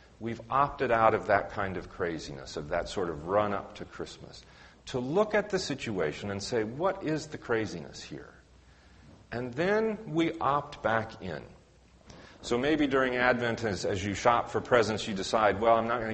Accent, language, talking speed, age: American, English, 180 wpm, 40-59